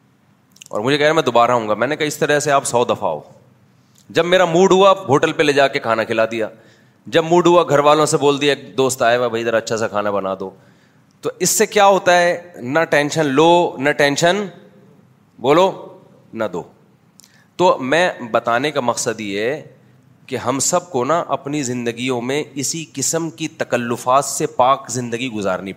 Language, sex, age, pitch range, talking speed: Urdu, male, 30-49, 120-155 Hz, 200 wpm